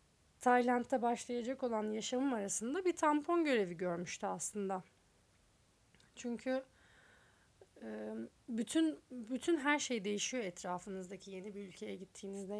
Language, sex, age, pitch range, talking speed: Turkish, female, 40-59, 200-275 Hz, 100 wpm